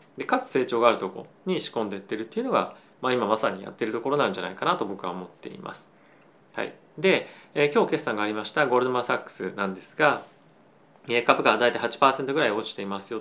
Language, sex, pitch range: Japanese, male, 110-160 Hz